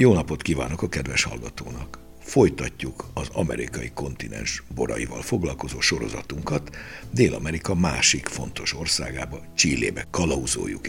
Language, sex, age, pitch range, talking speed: Hungarian, male, 60-79, 70-100 Hz, 105 wpm